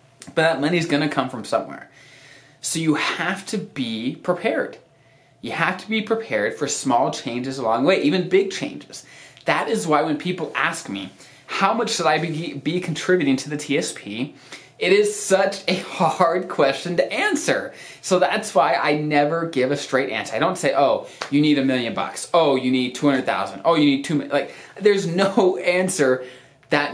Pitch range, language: 135-170 Hz, English